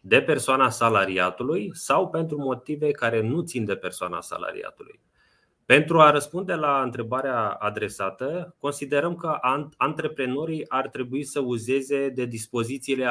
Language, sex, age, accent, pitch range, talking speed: Romanian, male, 20-39, native, 125-155 Hz, 125 wpm